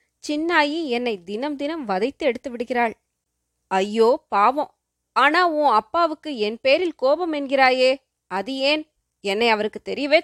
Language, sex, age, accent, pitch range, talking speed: Tamil, female, 20-39, native, 220-300 Hz, 125 wpm